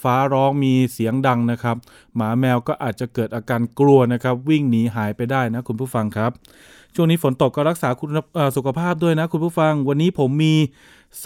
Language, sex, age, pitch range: Thai, male, 20-39, 135-170 Hz